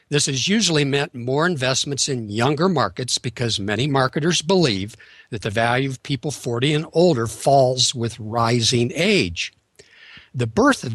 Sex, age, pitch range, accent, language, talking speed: male, 60-79, 115-155 Hz, American, English, 155 wpm